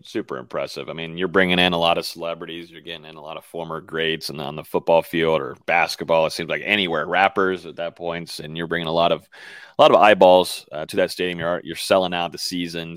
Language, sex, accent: English, male, American